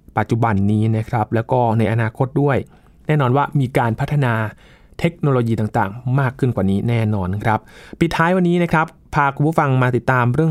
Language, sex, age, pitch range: Thai, male, 20-39, 110-150 Hz